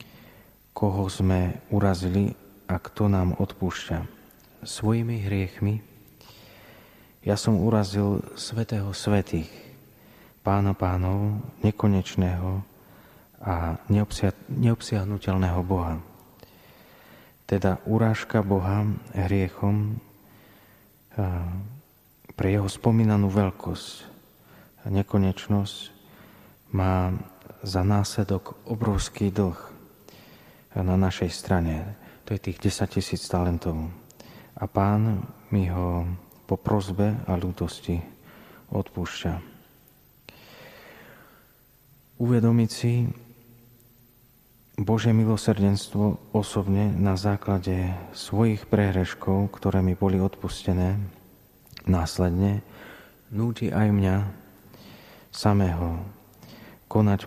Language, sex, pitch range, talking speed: Slovak, male, 95-110 Hz, 75 wpm